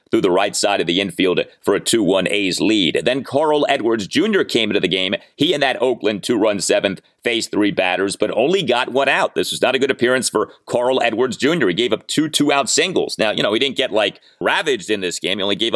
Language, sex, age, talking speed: English, male, 30-49, 250 wpm